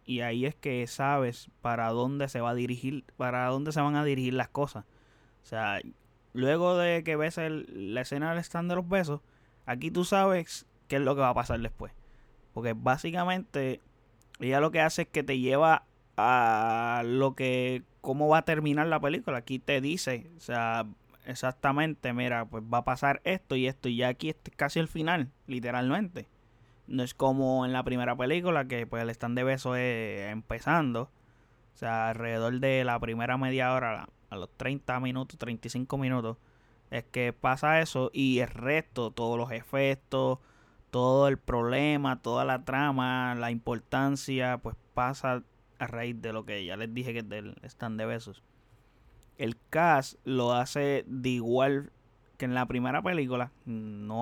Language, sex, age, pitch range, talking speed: Spanish, male, 20-39, 120-140 Hz, 180 wpm